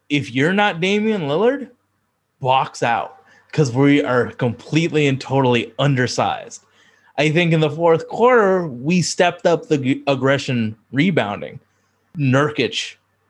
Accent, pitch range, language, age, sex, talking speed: American, 115-155 Hz, English, 20-39, male, 120 wpm